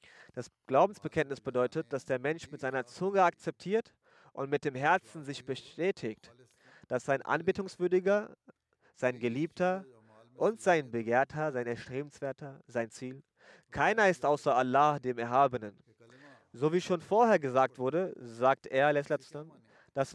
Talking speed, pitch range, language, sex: 130 wpm, 125-155 Hz, German, male